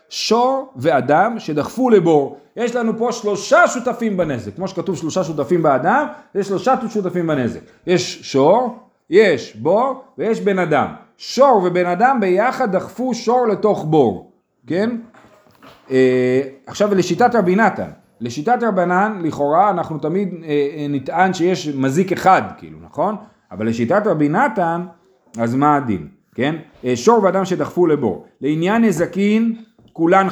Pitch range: 145-220 Hz